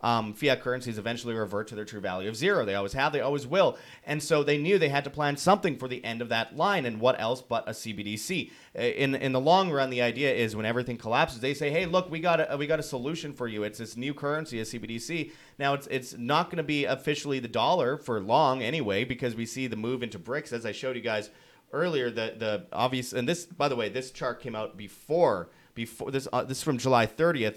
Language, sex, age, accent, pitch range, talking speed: English, male, 30-49, American, 110-135 Hz, 250 wpm